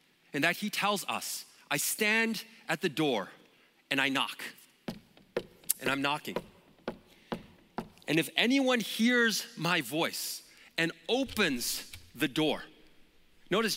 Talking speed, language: 120 wpm, English